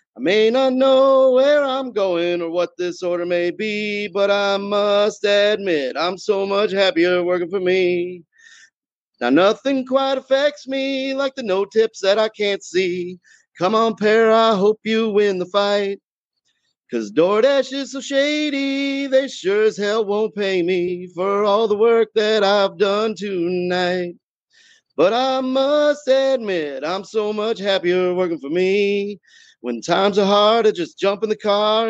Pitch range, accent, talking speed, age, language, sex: 190-235 Hz, American, 165 wpm, 30-49, English, male